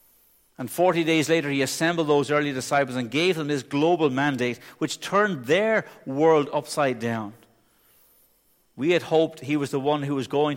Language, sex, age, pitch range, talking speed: English, male, 60-79, 135-170 Hz, 175 wpm